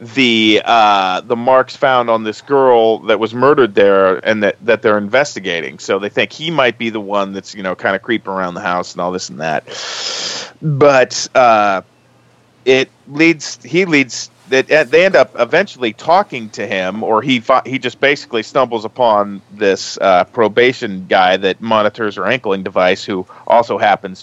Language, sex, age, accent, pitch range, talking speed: English, male, 40-59, American, 105-130 Hz, 180 wpm